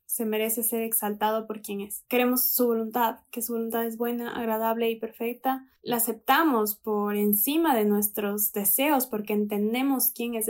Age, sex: 10-29, female